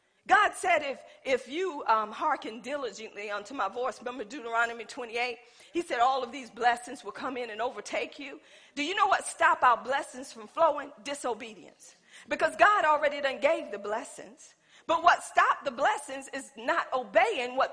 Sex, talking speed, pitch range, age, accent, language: female, 175 wpm, 245-360 Hz, 40-59, American, English